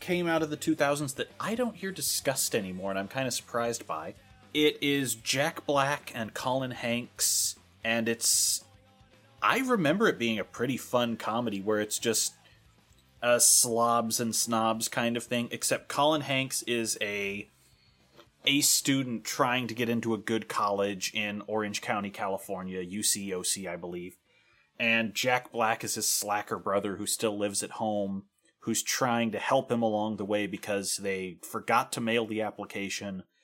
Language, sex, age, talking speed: English, male, 30-49, 165 wpm